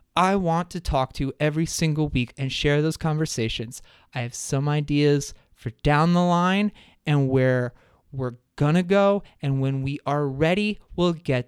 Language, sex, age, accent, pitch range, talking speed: English, male, 30-49, American, 125-160 Hz, 180 wpm